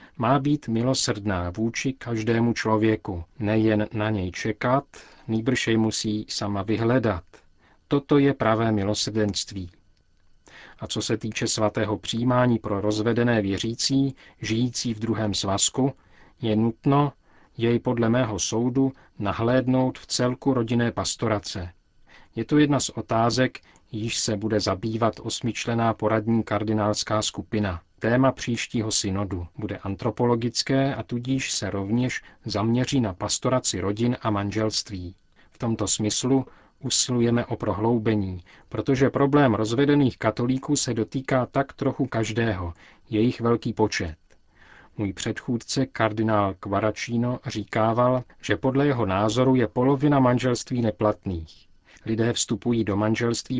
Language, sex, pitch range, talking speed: Czech, male, 105-125 Hz, 120 wpm